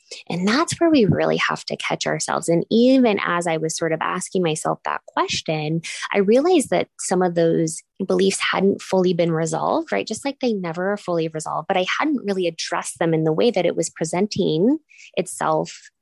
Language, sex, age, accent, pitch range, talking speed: English, female, 20-39, American, 175-225 Hz, 200 wpm